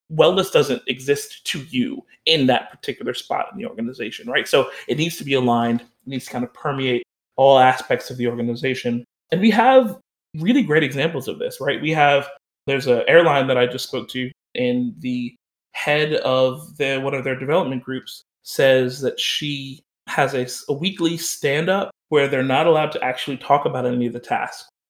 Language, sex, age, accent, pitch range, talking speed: English, male, 30-49, American, 130-175 Hz, 190 wpm